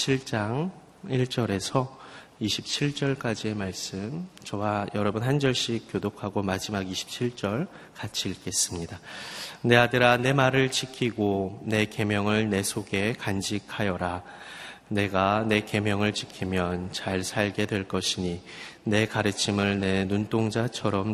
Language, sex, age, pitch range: Korean, male, 30-49, 95-120 Hz